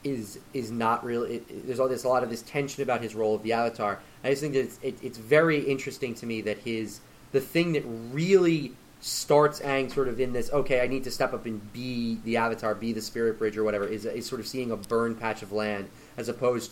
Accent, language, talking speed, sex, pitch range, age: American, English, 255 wpm, male, 110-130 Hz, 30-49